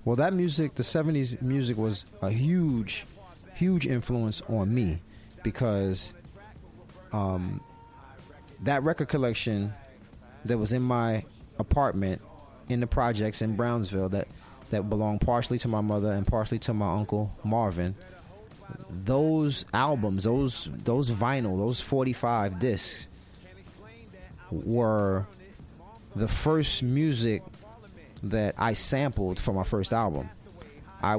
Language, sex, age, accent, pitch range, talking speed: English, male, 30-49, American, 95-120 Hz, 115 wpm